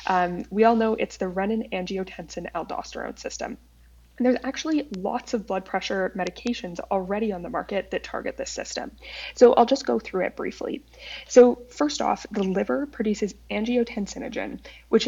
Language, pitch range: English, 185-240 Hz